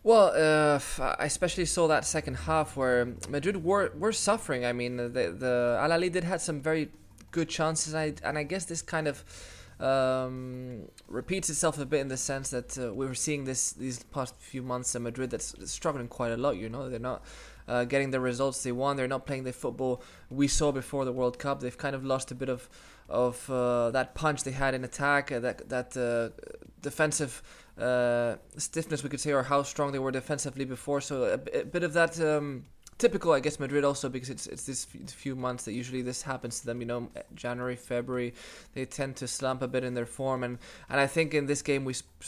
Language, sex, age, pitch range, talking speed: English, male, 20-39, 125-145 Hz, 225 wpm